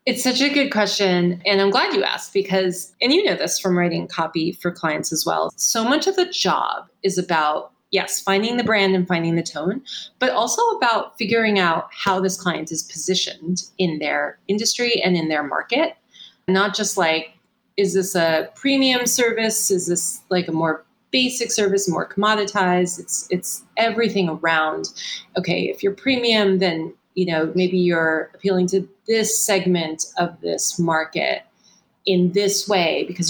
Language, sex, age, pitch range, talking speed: English, female, 30-49, 175-220 Hz, 170 wpm